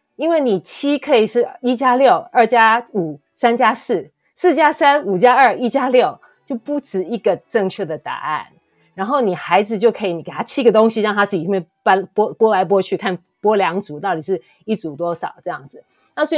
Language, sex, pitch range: Chinese, female, 190-265 Hz